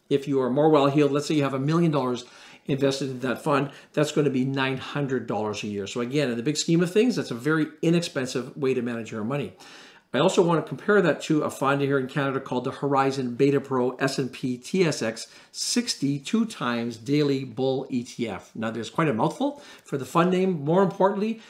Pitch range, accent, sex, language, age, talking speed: 130-165 Hz, American, male, English, 50-69, 205 wpm